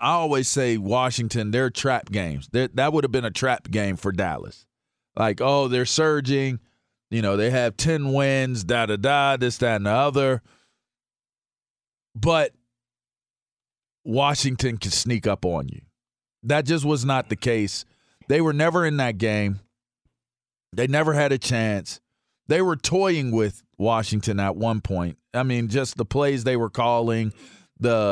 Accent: American